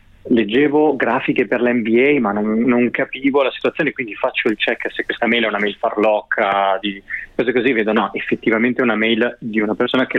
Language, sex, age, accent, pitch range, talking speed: Italian, male, 20-39, native, 105-125 Hz, 200 wpm